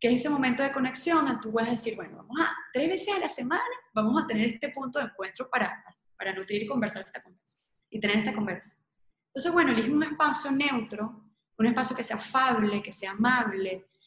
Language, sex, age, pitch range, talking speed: Spanish, female, 20-39, 210-270 Hz, 215 wpm